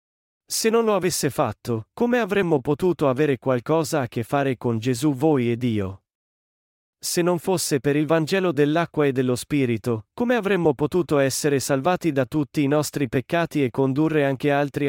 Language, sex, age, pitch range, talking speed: Italian, male, 30-49, 125-160 Hz, 170 wpm